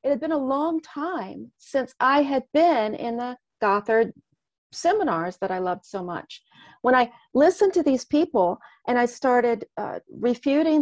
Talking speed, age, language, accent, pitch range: 165 wpm, 40-59, English, American, 205-265 Hz